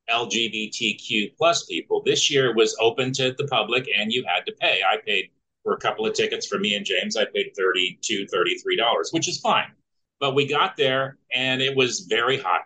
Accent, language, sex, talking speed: American, English, male, 200 wpm